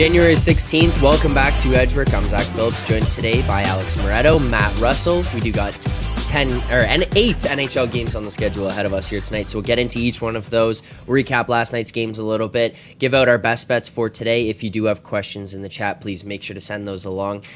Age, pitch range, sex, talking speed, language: 10-29, 100-125 Hz, male, 240 wpm, English